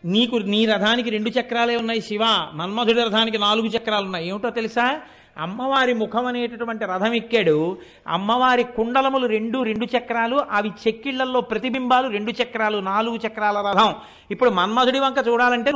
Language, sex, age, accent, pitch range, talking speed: Telugu, male, 60-79, native, 215-270 Hz, 135 wpm